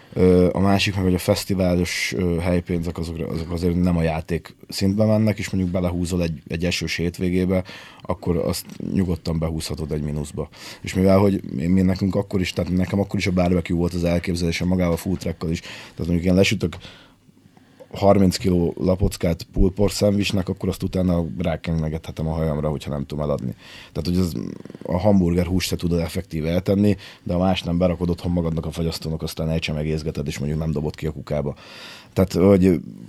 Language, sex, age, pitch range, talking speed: Hungarian, male, 20-39, 85-100 Hz, 180 wpm